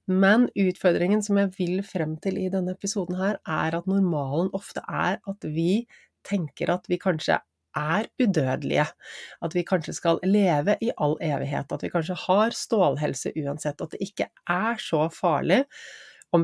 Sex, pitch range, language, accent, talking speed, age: female, 165-200 Hz, English, Swedish, 185 wpm, 30-49